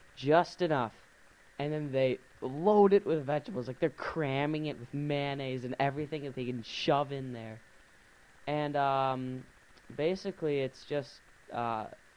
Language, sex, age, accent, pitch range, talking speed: English, male, 10-29, American, 120-150 Hz, 145 wpm